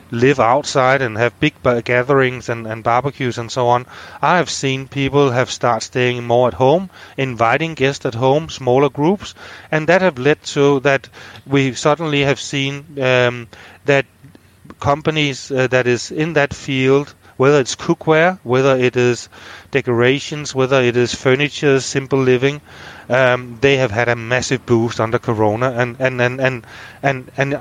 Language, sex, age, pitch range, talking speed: English, male, 30-49, 120-140 Hz, 165 wpm